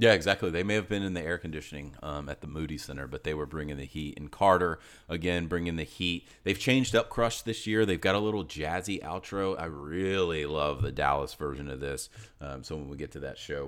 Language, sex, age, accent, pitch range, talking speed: English, male, 30-49, American, 85-115 Hz, 240 wpm